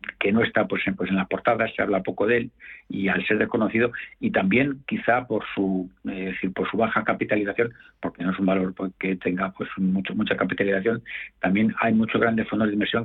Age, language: 60-79, Spanish